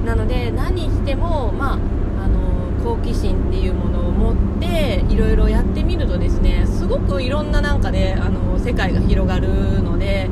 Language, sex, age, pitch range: Japanese, female, 20-39, 85-95 Hz